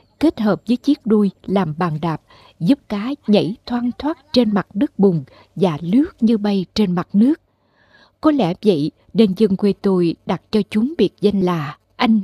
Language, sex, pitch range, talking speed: Vietnamese, female, 180-235 Hz, 185 wpm